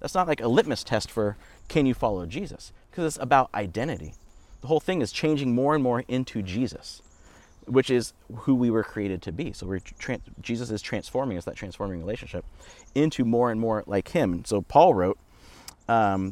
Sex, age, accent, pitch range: male, 30-49, American, 95-130 Hz